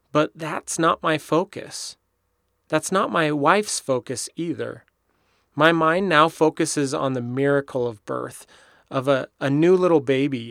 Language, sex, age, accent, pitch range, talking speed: English, male, 30-49, American, 125-150 Hz, 150 wpm